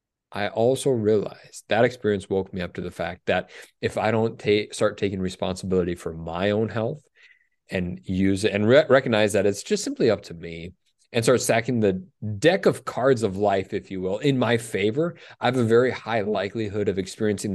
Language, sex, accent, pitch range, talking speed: English, male, American, 95-125 Hz, 195 wpm